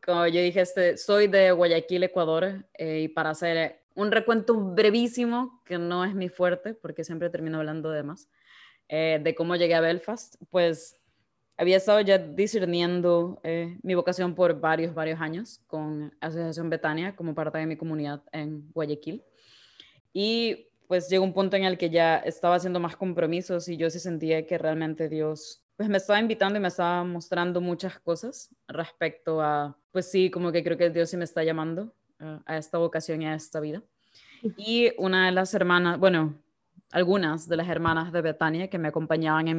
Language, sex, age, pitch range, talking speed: English, female, 20-39, 160-185 Hz, 180 wpm